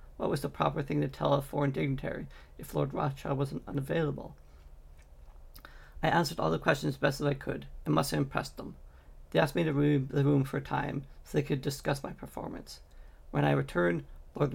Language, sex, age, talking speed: English, male, 40-59, 200 wpm